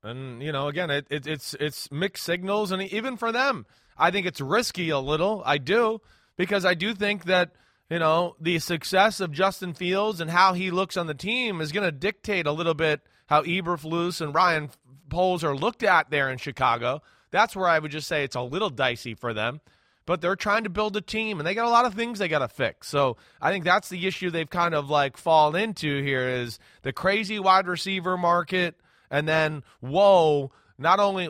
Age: 20-39